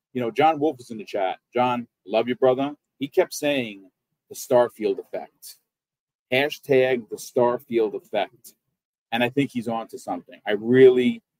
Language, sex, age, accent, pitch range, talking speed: English, male, 40-59, American, 115-185 Hz, 165 wpm